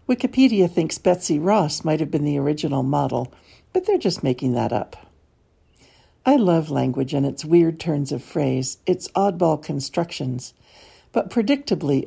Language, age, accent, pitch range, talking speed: English, 60-79, American, 145-205 Hz, 150 wpm